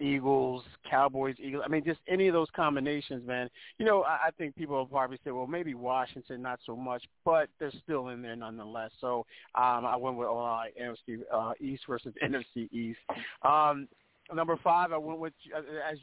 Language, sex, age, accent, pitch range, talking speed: English, male, 40-59, American, 125-145 Hz, 190 wpm